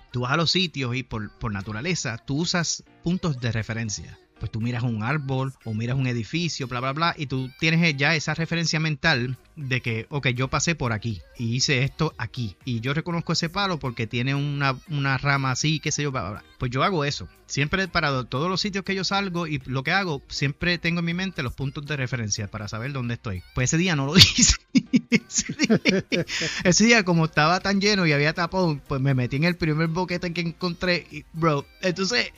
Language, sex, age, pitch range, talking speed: Spanish, male, 30-49, 130-185 Hz, 215 wpm